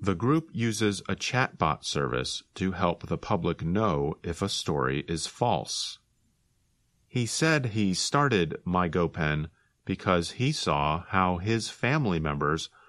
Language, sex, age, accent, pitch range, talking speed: English, male, 40-59, American, 80-105 Hz, 130 wpm